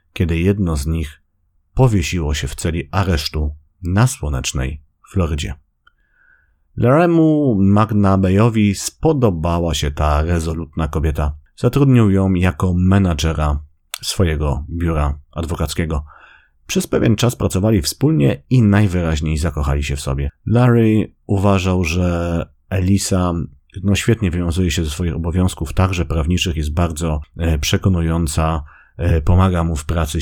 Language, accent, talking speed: Polish, native, 115 wpm